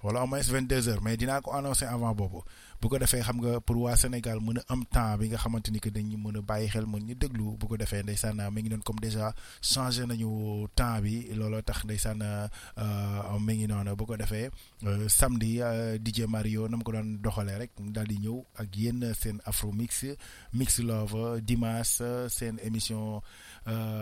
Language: Italian